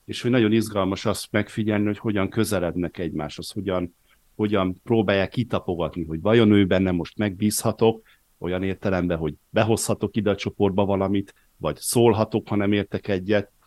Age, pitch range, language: 50-69, 90-110 Hz, Hungarian